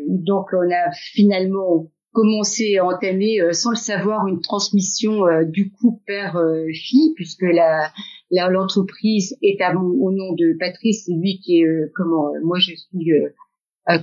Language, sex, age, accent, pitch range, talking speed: French, female, 50-69, French, 175-215 Hz, 170 wpm